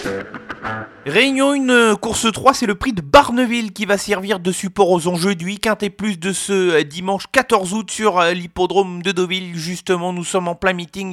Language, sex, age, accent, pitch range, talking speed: French, male, 30-49, French, 175-215 Hz, 190 wpm